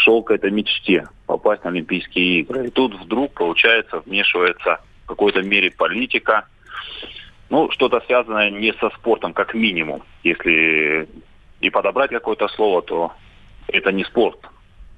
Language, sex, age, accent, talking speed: Russian, male, 30-49, native, 135 wpm